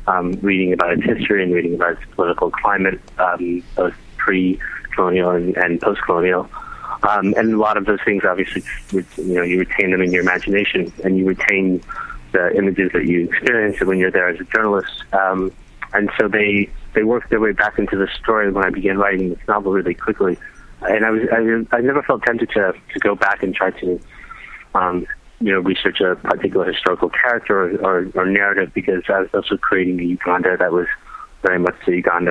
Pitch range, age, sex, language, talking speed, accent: 90-100 Hz, 30-49, male, English, 195 wpm, American